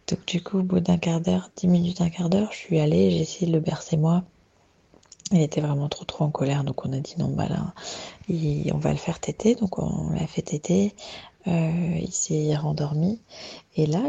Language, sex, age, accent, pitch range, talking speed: French, female, 20-39, French, 160-185 Hz, 220 wpm